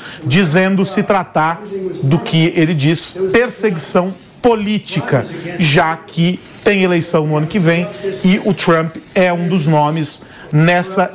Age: 40-59